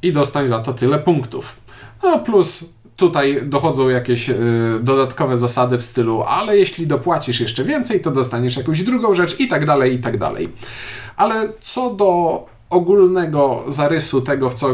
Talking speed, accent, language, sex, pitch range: 165 wpm, native, Polish, male, 120-175 Hz